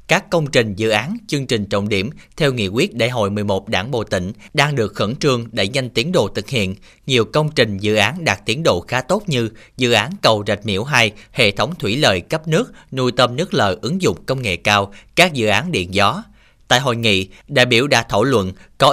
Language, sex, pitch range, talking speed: Vietnamese, male, 105-140 Hz, 235 wpm